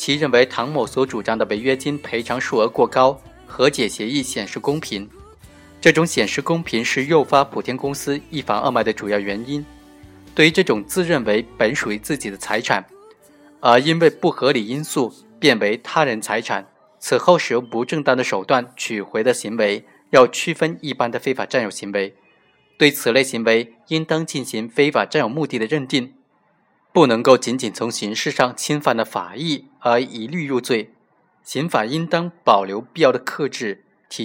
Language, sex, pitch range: Chinese, male, 115-150 Hz